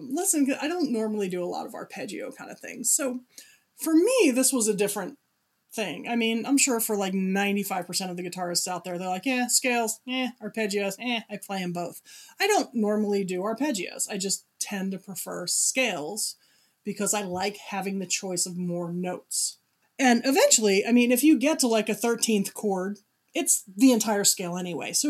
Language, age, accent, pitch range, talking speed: English, 30-49, American, 190-255 Hz, 195 wpm